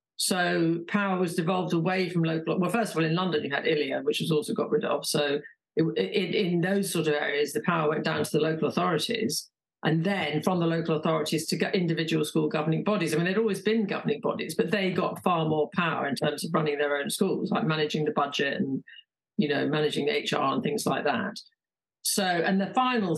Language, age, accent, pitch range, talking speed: English, 50-69, British, 155-205 Hz, 230 wpm